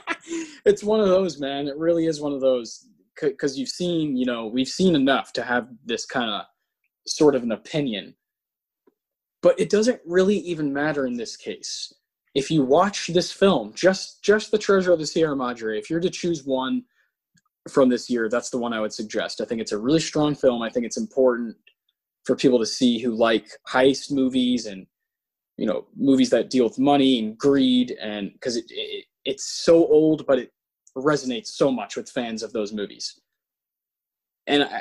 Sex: male